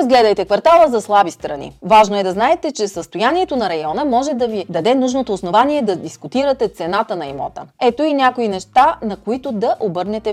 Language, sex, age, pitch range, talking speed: Bulgarian, female, 30-49, 185-250 Hz, 185 wpm